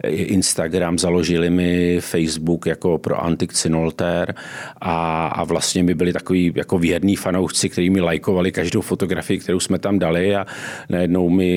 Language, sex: Czech, male